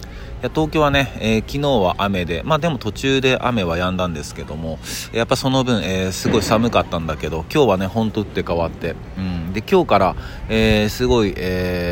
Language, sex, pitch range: Japanese, male, 90-110 Hz